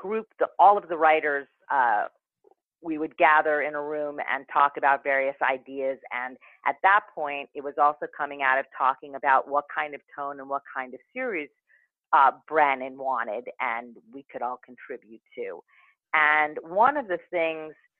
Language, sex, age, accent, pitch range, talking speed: English, female, 40-59, American, 135-170 Hz, 175 wpm